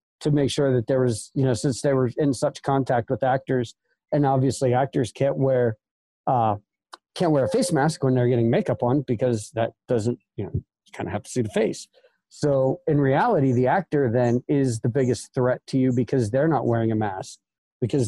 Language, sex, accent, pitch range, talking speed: English, male, American, 125-145 Hz, 210 wpm